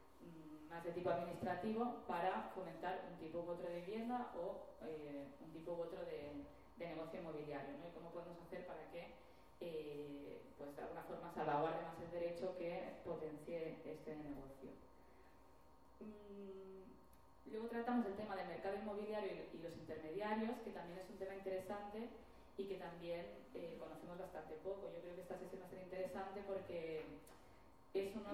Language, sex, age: English, female, 20-39